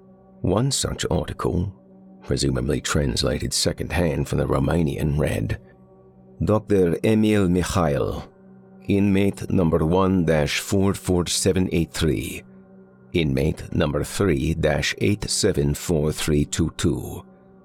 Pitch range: 70-100 Hz